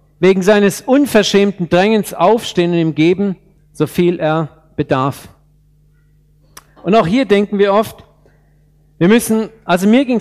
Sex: male